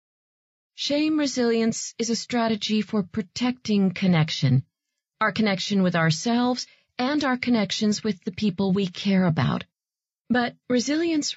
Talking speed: 120 wpm